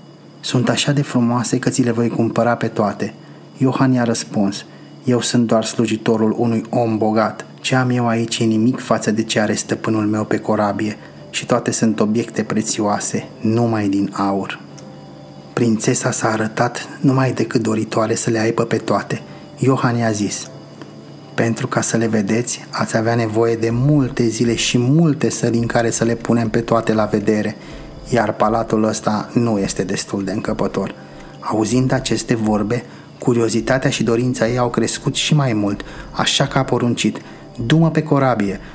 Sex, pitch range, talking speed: male, 110-125 Hz, 165 wpm